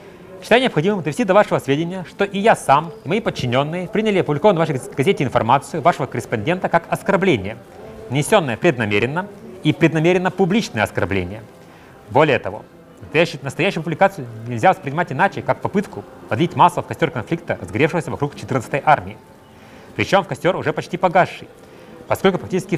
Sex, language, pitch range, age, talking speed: male, Russian, 135-185 Hz, 30-49, 145 wpm